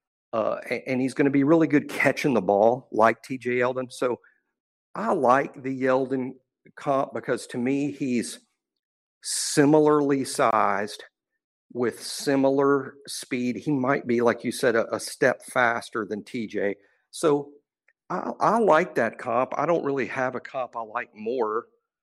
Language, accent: English, American